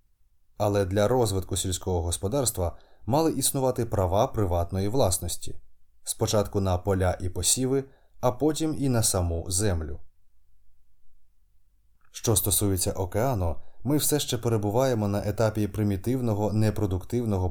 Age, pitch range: 20-39, 90-115 Hz